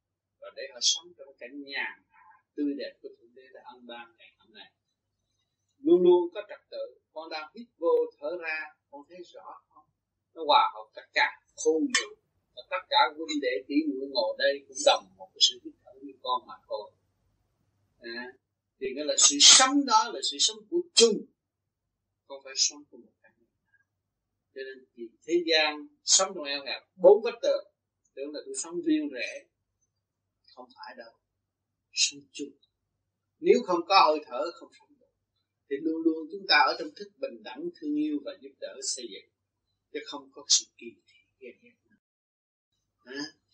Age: 20-39